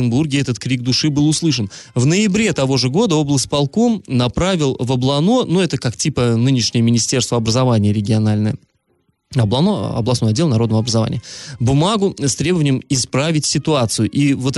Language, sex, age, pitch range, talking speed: Russian, male, 20-39, 115-155 Hz, 140 wpm